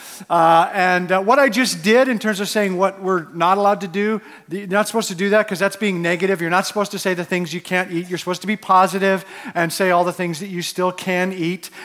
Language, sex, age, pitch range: English, male, 40-59, 175-220 Hz